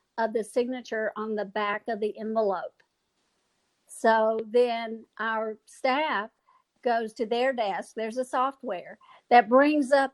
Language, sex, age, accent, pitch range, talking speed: English, female, 50-69, American, 225-265 Hz, 135 wpm